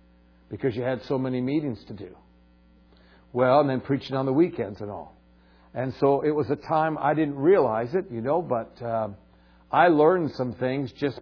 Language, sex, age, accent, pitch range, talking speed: English, male, 60-79, American, 125-160 Hz, 195 wpm